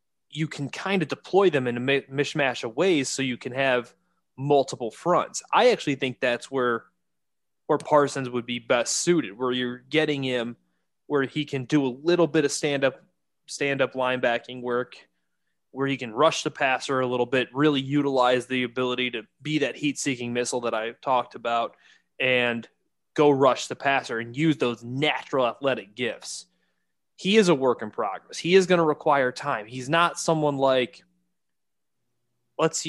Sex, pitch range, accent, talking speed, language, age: male, 120-145 Hz, American, 175 wpm, English, 20-39